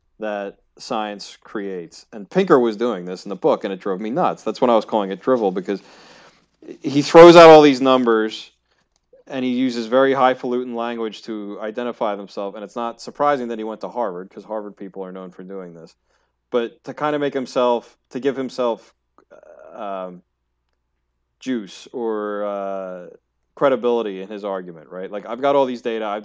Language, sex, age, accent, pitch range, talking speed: English, male, 30-49, American, 95-130 Hz, 185 wpm